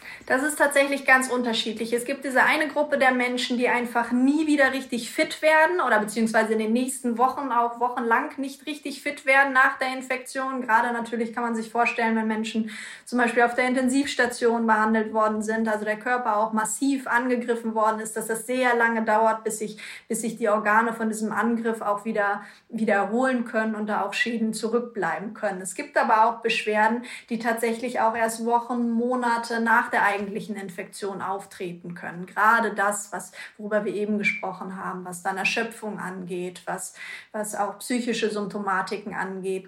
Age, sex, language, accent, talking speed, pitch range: 20-39, female, German, German, 175 wpm, 210-245 Hz